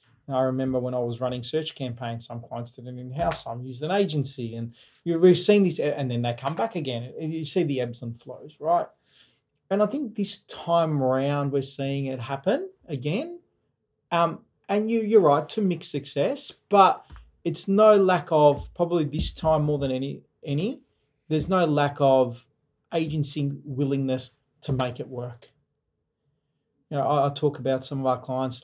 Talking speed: 180 wpm